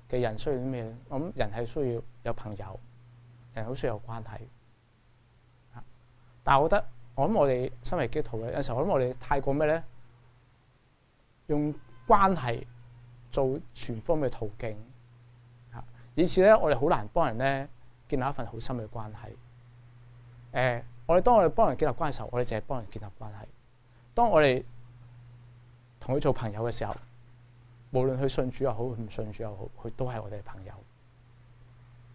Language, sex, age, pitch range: English, male, 20-39, 120-140 Hz